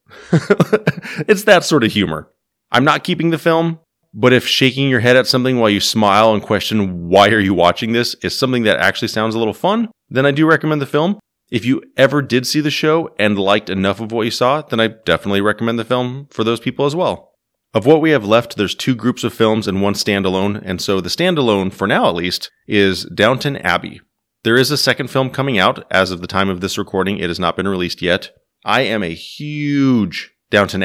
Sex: male